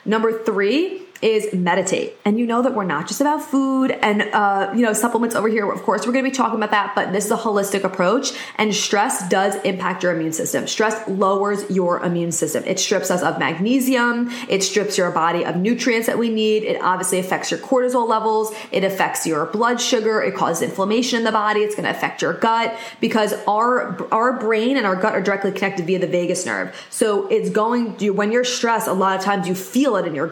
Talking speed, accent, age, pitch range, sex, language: 225 wpm, American, 20-39, 190-230 Hz, female, English